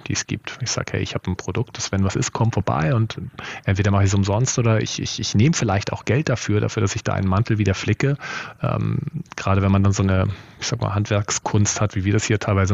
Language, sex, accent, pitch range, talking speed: German, male, German, 95-115 Hz, 265 wpm